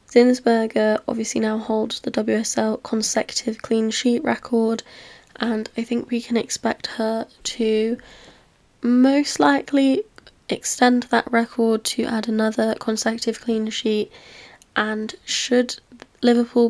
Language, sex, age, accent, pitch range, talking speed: English, female, 10-29, British, 220-240 Hz, 115 wpm